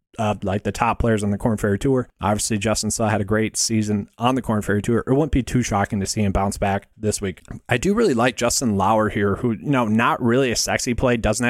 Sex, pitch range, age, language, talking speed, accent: male, 110-125 Hz, 30-49, English, 260 wpm, American